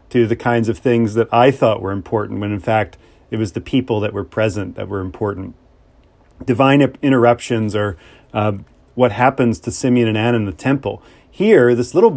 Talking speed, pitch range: 190 wpm, 110-130 Hz